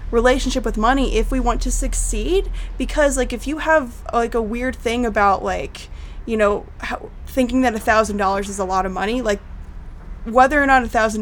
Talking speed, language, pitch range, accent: 200 wpm, English, 195-245 Hz, American